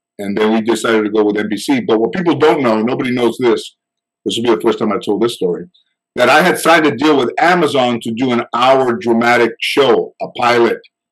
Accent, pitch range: American, 115-145 Hz